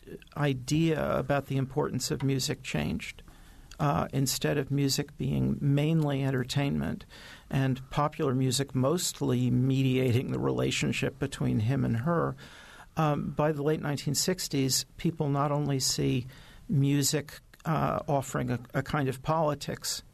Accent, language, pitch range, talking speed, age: American, English, 130-155 Hz, 125 wpm, 50-69